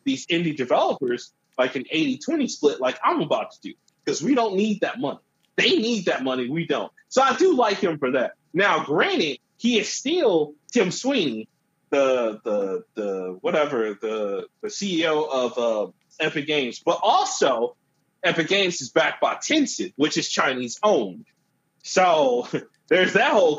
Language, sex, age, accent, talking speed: English, male, 30-49, American, 165 wpm